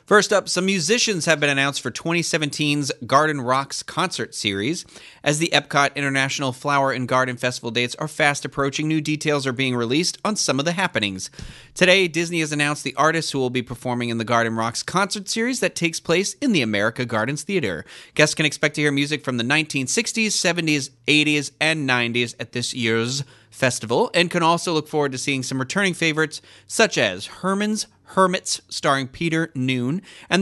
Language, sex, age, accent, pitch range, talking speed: English, male, 30-49, American, 130-170 Hz, 185 wpm